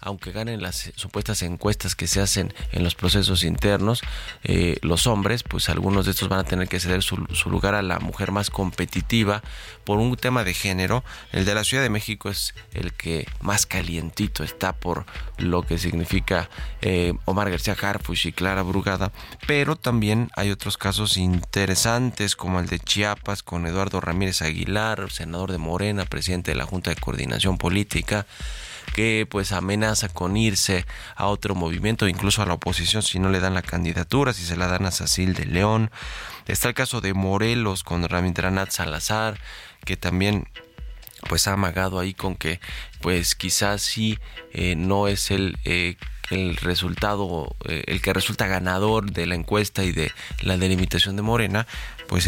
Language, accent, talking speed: Spanish, Mexican, 175 wpm